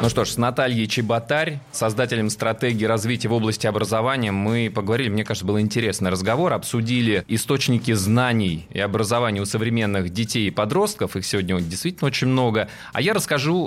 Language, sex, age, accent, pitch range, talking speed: Russian, male, 20-39, native, 105-140 Hz, 160 wpm